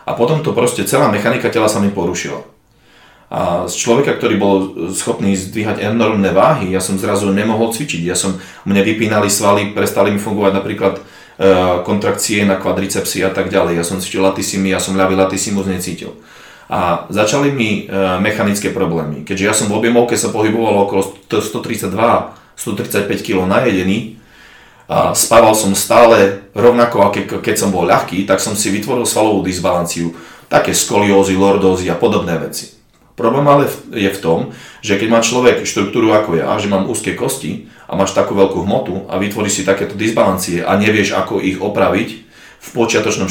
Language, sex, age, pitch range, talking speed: Czech, male, 30-49, 95-105 Hz, 175 wpm